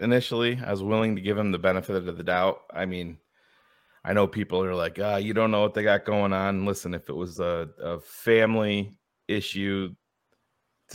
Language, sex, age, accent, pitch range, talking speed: English, male, 30-49, American, 90-110 Hz, 210 wpm